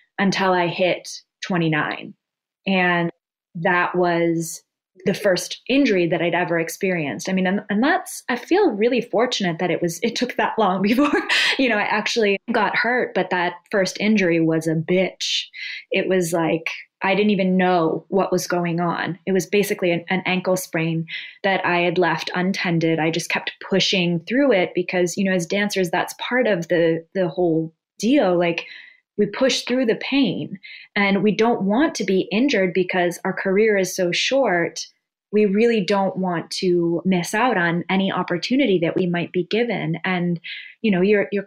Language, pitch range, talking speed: English, 175-210 Hz, 180 wpm